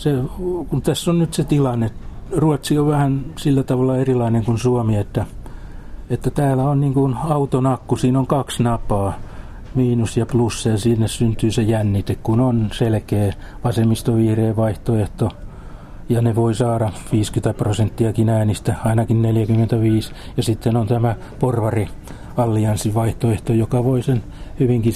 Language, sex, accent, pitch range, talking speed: Finnish, male, native, 110-135 Hz, 140 wpm